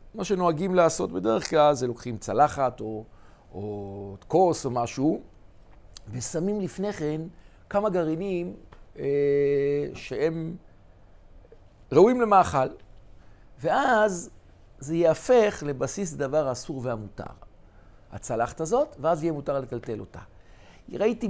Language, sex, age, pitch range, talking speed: Hebrew, male, 60-79, 125-180 Hz, 105 wpm